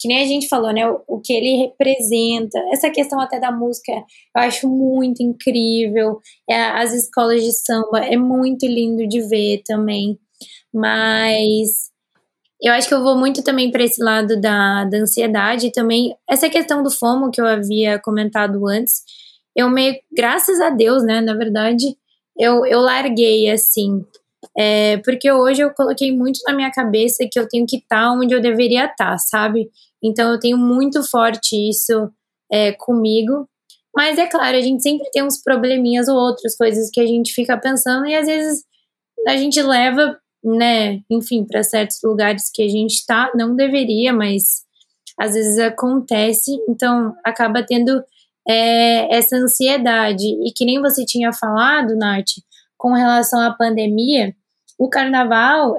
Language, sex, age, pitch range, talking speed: Portuguese, female, 20-39, 220-260 Hz, 165 wpm